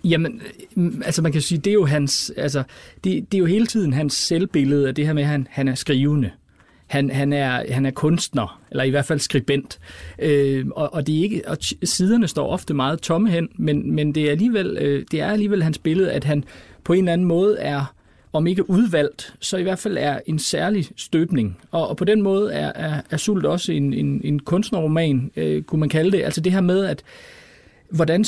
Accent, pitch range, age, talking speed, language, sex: native, 140-180 Hz, 30-49, 225 wpm, Danish, male